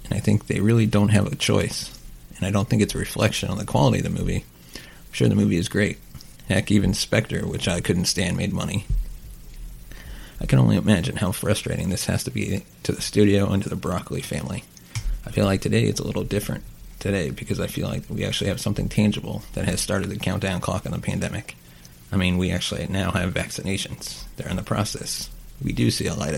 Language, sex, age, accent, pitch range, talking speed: English, male, 30-49, American, 85-105 Hz, 225 wpm